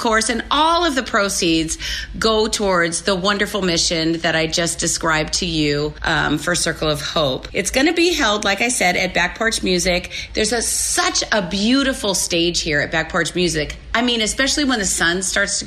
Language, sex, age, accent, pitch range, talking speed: English, female, 40-59, American, 170-220 Hz, 205 wpm